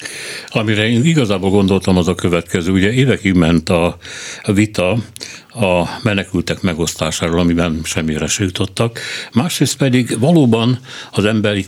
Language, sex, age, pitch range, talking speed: Hungarian, male, 60-79, 90-115 Hz, 125 wpm